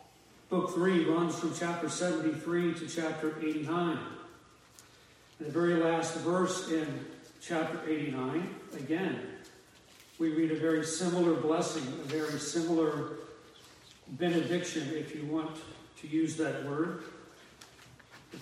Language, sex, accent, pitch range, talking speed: English, male, American, 150-170 Hz, 115 wpm